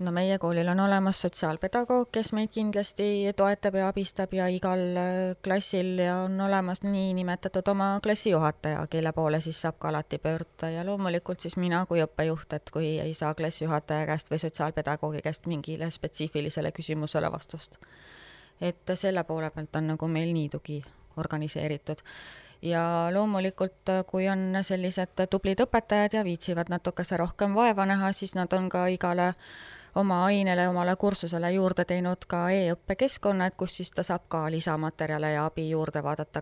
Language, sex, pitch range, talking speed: English, female, 155-190 Hz, 155 wpm